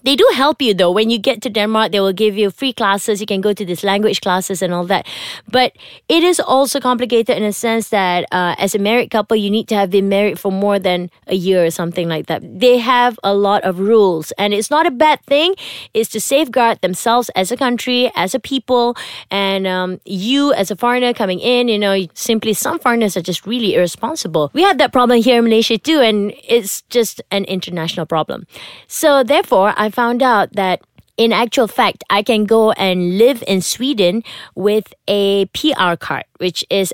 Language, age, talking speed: English, 20-39, 215 wpm